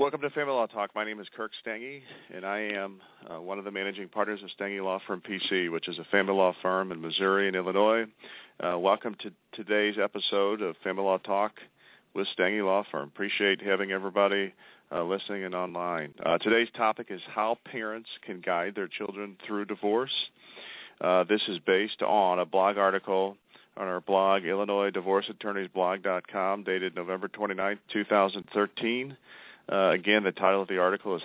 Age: 40-59